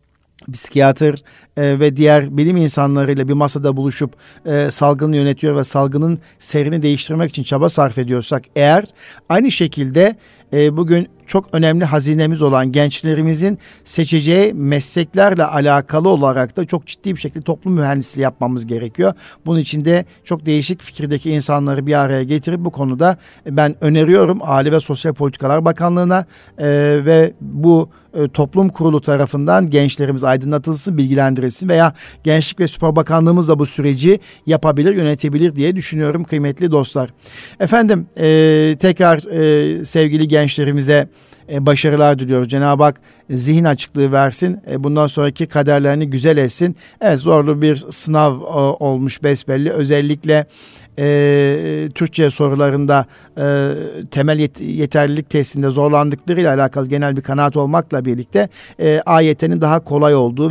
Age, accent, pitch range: 50-69, native, 140-160 Hz